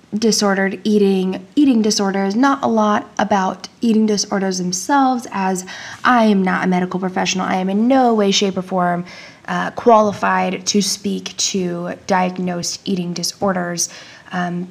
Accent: American